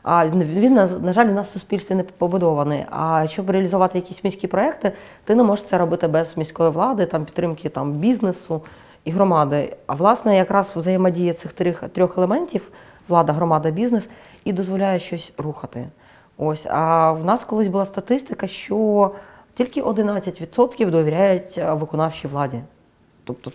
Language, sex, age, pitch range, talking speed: Ukrainian, female, 30-49, 160-200 Hz, 150 wpm